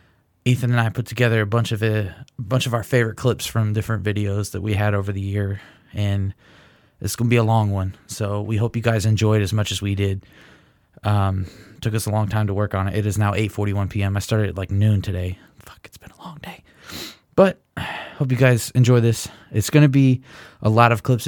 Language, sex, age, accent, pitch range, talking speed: English, male, 20-39, American, 100-115 Hz, 235 wpm